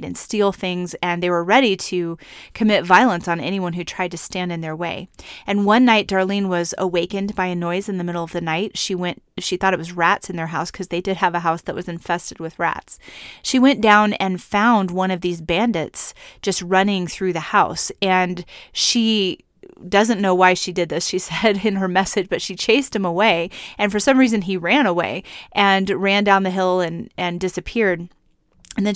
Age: 30-49